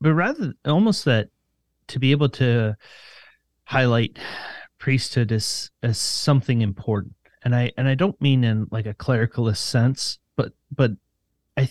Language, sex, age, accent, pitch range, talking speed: English, male, 30-49, American, 105-130 Hz, 145 wpm